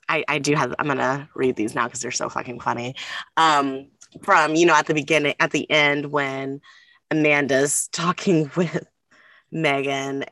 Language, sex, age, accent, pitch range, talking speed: English, female, 20-39, American, 150-180 Hz, 170 wpm